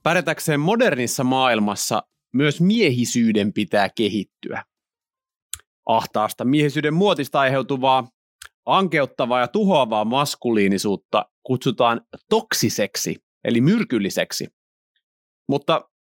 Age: 30-49